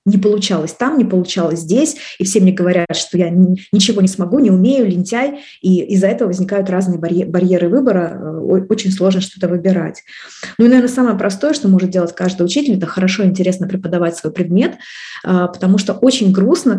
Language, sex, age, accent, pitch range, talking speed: Russian, female, 20-39, native, 180-205 Hz, 180 wpm